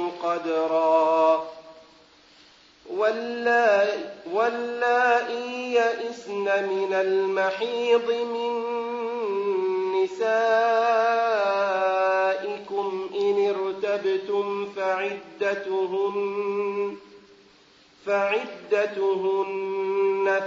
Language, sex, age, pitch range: English, male, 40-59, 195-235 Hz